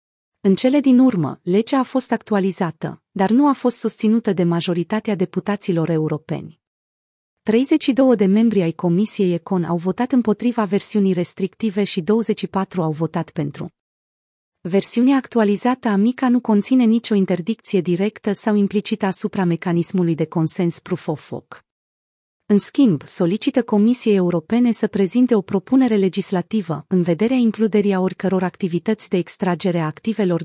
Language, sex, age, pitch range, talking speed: Romanian, female, 30-49, 175-220 Hz, 135 wpm